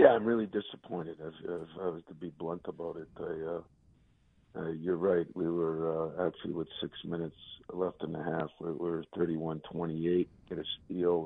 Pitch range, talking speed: 80-85 Hz, 180 wpm